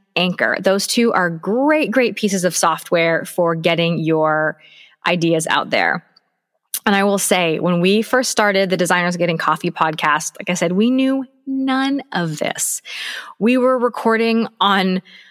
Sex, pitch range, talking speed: female, 175-240 Hz, 155 wpm